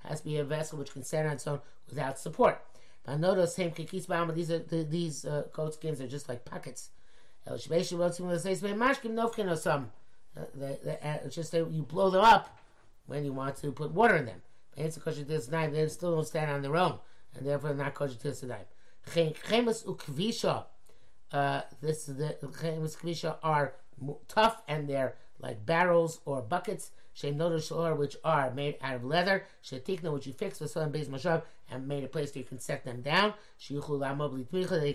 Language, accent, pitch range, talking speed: English, American, 140-175 Hz, 195 wpm